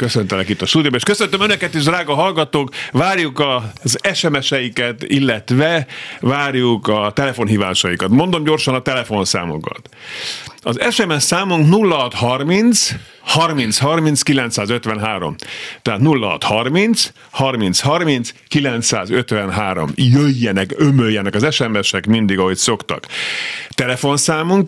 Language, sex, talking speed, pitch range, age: Hungarian, male, 95 wpm, 105-145 Hz, 50-69